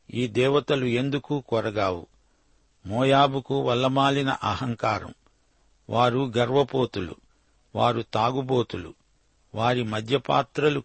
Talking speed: 70 wpm